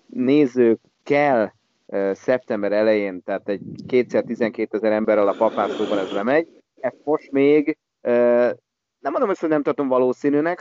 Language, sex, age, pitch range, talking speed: Hungarian, male, 30-49, 110-135 Hz, 135 wpm